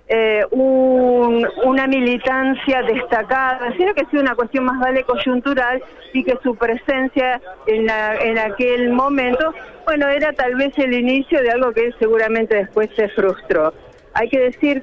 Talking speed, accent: 160 wpm, Argentinian